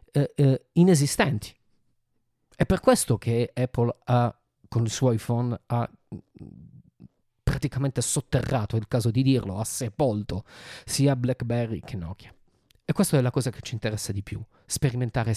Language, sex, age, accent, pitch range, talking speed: Italian, male, 30-49, native, 115-150 Hz, 140 wpm